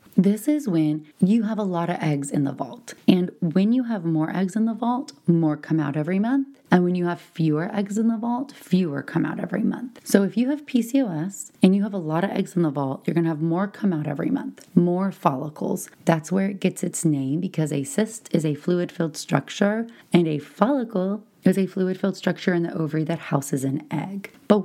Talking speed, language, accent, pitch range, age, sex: 230 wpm, English, American, 160-205 Hz, 30-49, female